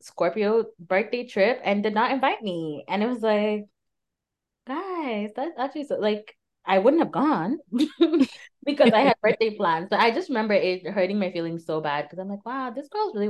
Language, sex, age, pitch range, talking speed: English, female, 20-39, 135-185 Hz, 195 wpm